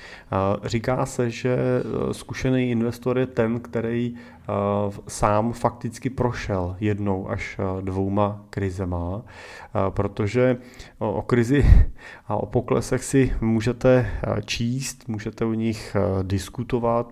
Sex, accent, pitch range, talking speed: male, native, 100-115 Hz, 100 wpm